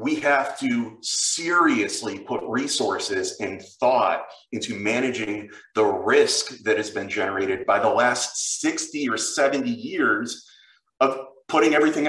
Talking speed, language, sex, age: 130 wpm, English, male, 30-49